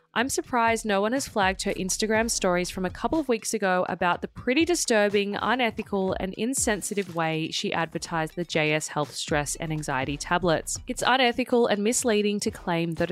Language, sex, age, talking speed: English, female, 20-39, 180 wpm